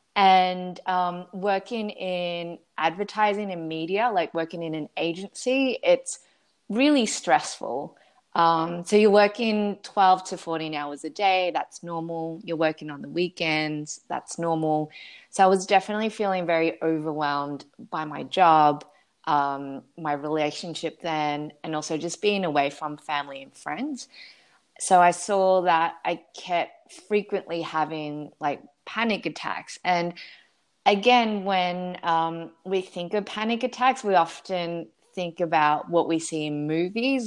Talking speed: 140 wpm